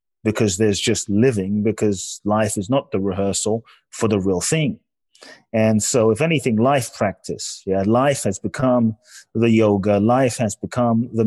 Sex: male